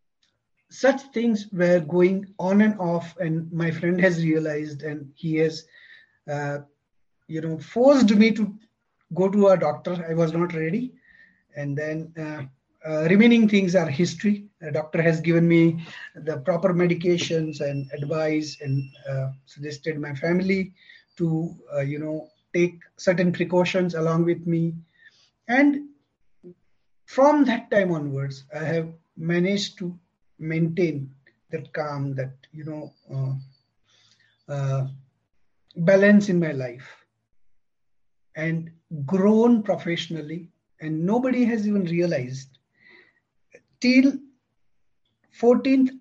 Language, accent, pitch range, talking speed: English, Indian, 150-190 Hz, 120 wpm